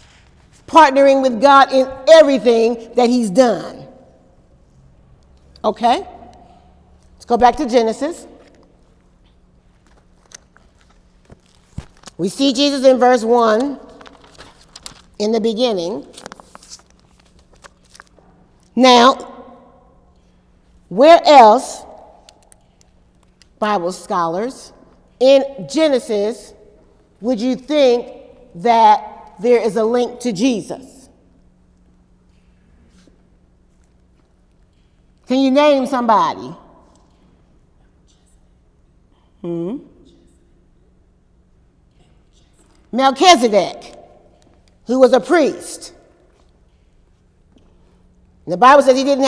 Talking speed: 70 wpm